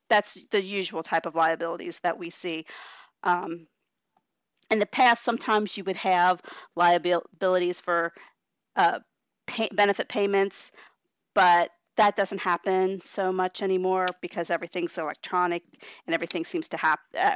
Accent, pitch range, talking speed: American, 170-200 Hz, 130 wpm